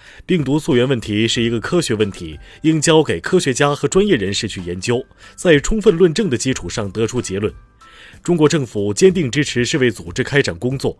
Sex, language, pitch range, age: male, Chinese, 105-150 Hz, 20-39